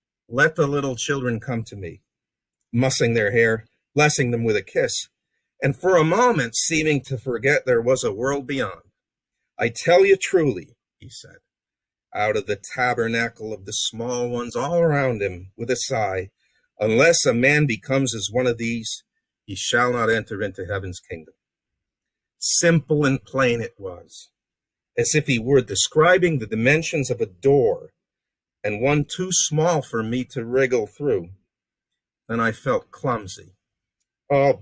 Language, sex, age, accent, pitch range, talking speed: English, male, 50-69, American, 115-160 Hz, 160 wpm